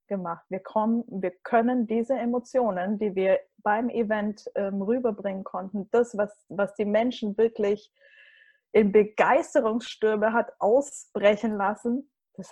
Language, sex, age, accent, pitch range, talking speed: German, female, 20-39, German, 205-240 Hz, 120 wpm